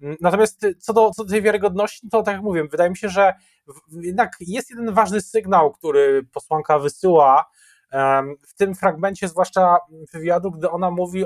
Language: Polish